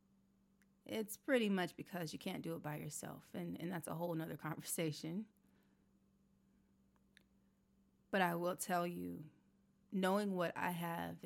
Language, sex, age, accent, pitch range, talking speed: English, female, 30-49, American, 160-195 Hz, 140 wpm